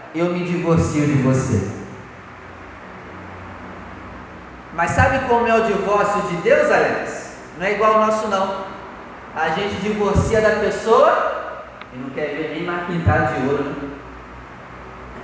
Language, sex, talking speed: Portuguese, male, 145 wpm